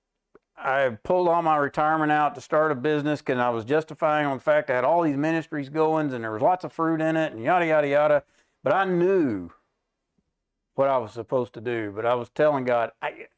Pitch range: 125-155 Hz